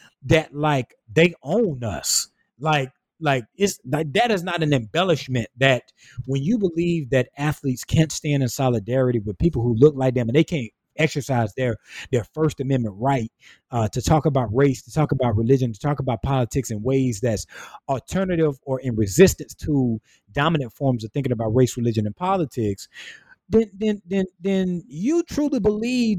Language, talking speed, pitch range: English, 175 wpm, 120-155 Hz